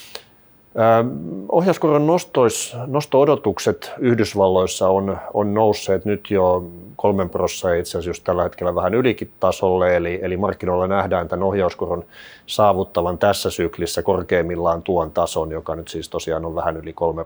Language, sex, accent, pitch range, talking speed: Finnish, male, native, 90-105 Hz, 120 wpm